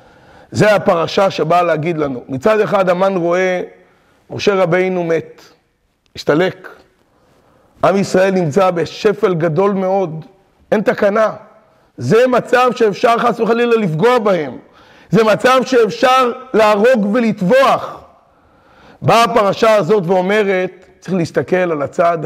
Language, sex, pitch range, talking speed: Hebrew, male, 165-210 Hz, 110 wpm